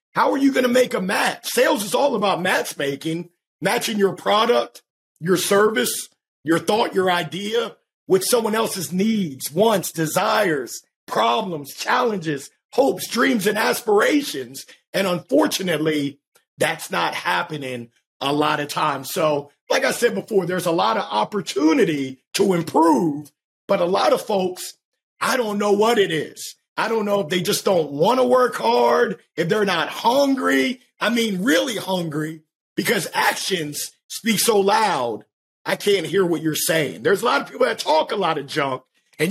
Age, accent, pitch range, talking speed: 50-69, American, 160-240 Hz, 165 wpm